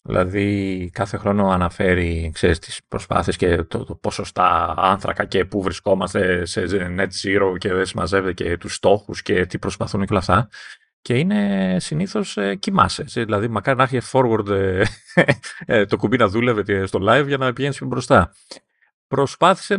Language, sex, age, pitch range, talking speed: Greek, male, 30-49, 100-150 Hz, 150 wpm